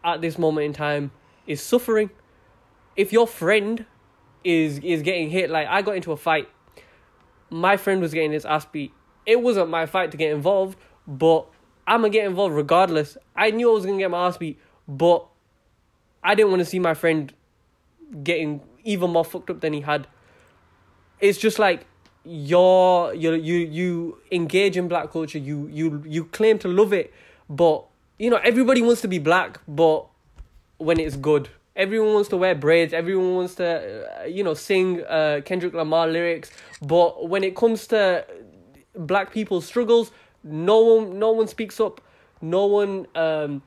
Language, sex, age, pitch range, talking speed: English, male, 10-29, 160-210 Hz, 175 wpm